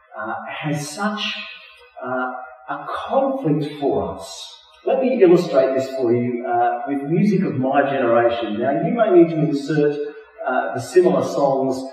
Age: 40-59